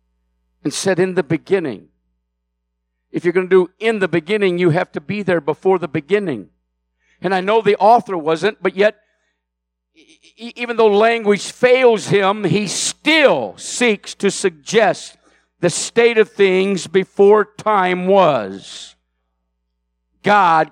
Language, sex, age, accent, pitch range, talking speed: English, male, 50-69, American, 155-205 Hz, 135 wpm